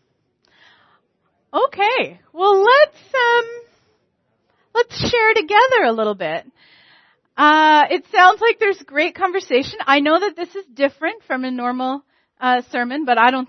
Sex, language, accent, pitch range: female, English, American, 225-360 Hz